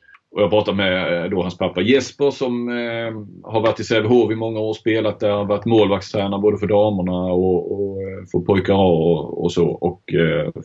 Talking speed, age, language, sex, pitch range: 205 wpm, 30-49, Swedish, male, 90-115 Hz